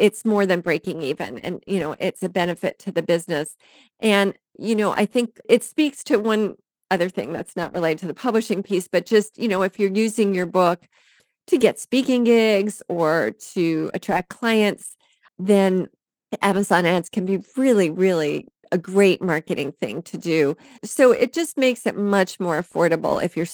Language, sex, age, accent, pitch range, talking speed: English, female, 40-59, American, 175-215 Hz, 185 wpm